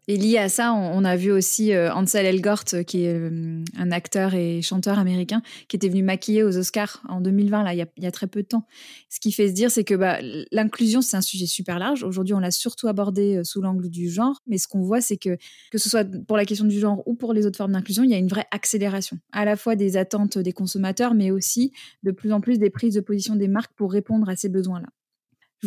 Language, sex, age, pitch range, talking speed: French, female, 20-39, 195-230 Hz, 250 wpm